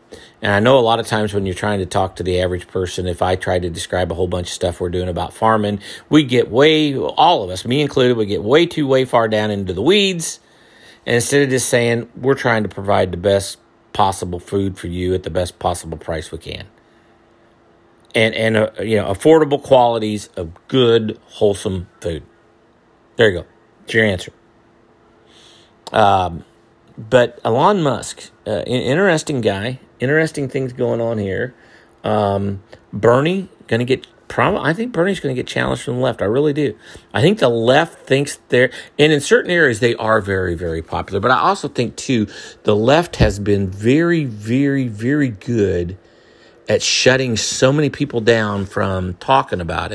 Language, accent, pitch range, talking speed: English, American, 95-130 Hz, 190 wpm